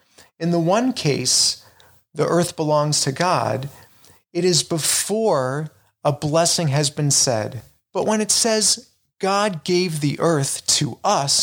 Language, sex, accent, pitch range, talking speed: English, male, American, 135-175 Hz, 140 wpm